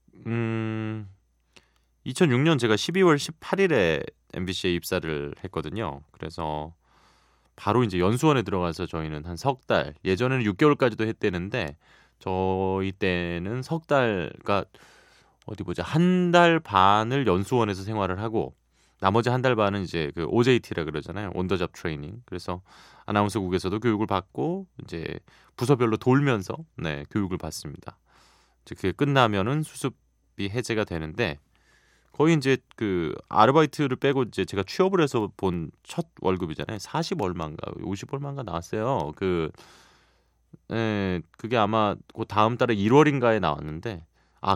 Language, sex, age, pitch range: Korean, male, 20-39, 85-125 Hz